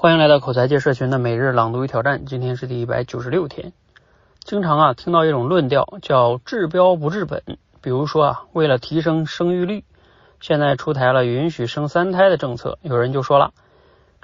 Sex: male